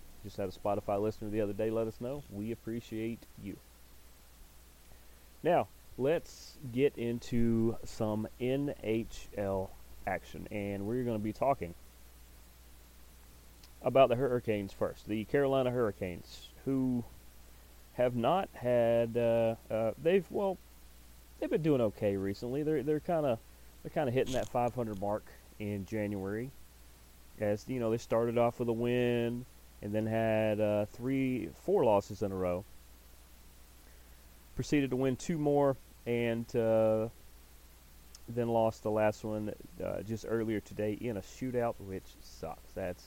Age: 30-49